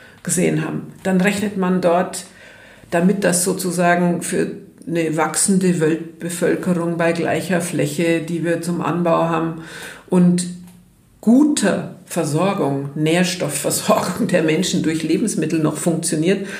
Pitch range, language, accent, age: 165-195 Hz, German, German, 50-69